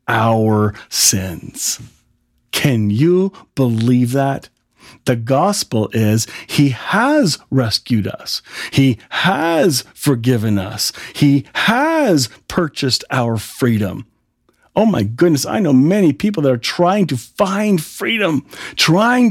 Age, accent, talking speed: 40-59, American, 110 wpm